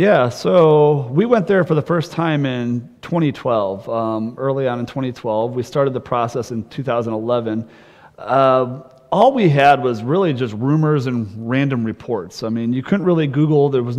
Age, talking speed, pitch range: 30-49, 175 wpm, 115-145 Hz